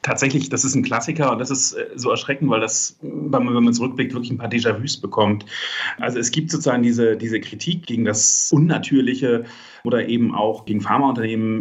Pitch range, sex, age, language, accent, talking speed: 110-135 Hz, male, 40-59, German, German, 180 wpm